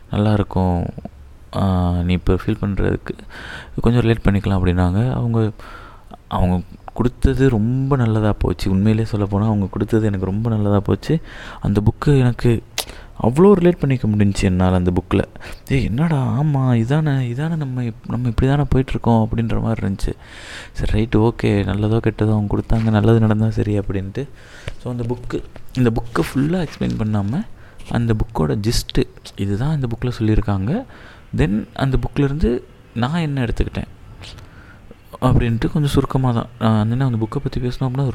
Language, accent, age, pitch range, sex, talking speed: Tamil, native, 20-39, 100-125 Hz, male, 140 wpm